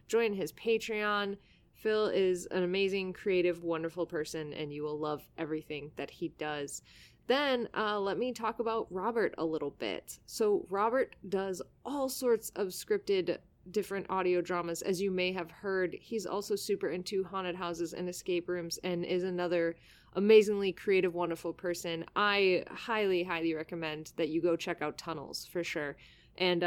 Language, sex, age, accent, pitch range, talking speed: English, female, 20-39, American, 165-220 Hz, 160 wpm